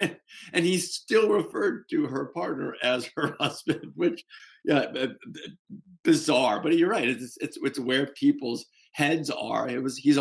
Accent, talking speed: American, 155 wpm